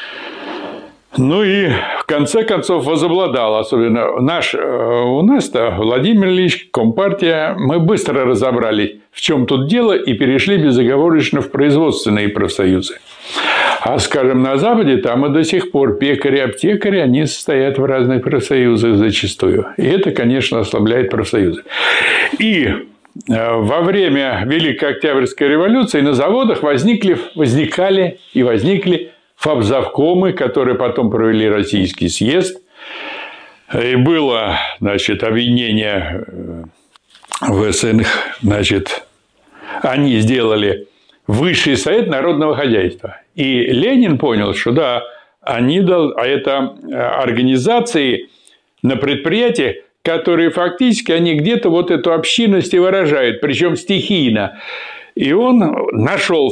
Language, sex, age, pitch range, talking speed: Russian, male, 60-79, 120-185 Hz, 110 wpm